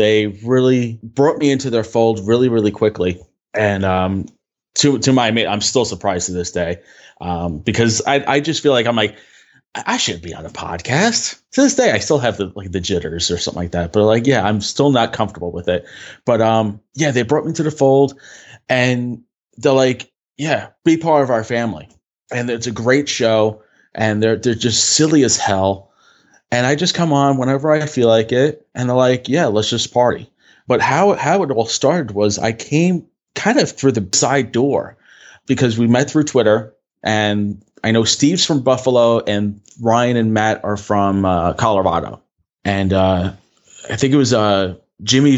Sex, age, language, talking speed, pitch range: male, 20-39, English, 195 wpm, 105-140 Hz